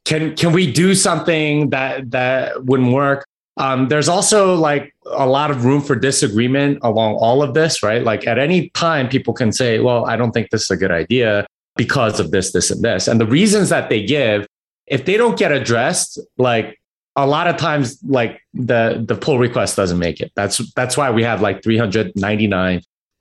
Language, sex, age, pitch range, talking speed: English, male, 30-49, 115-145 Hz, 200 wpm